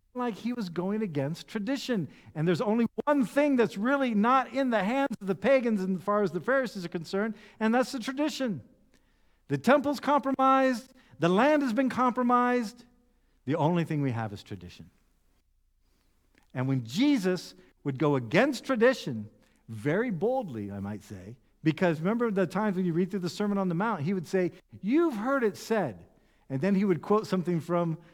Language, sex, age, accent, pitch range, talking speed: English, male, 50-69, American, 140-215 Hz, 180 wpm